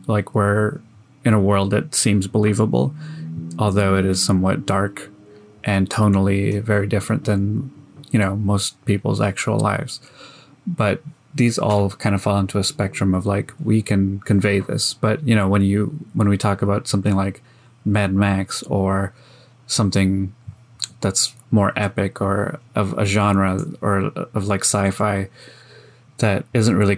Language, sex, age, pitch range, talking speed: English, male, 20-39, 100-115 Hz, 150 wpm